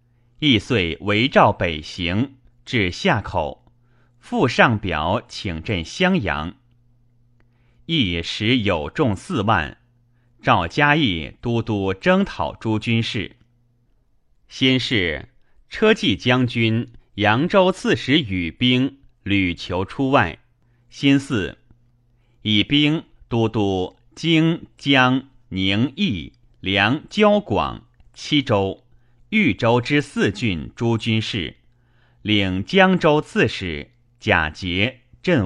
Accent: native